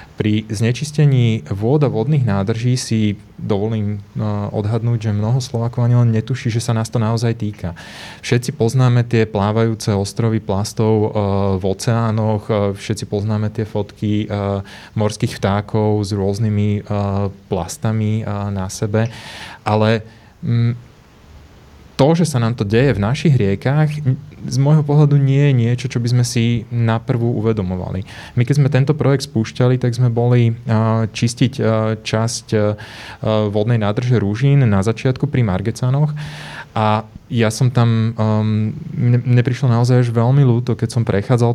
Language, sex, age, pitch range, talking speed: Slovak, male, 20-39, 105-125 Hz, 135 wpm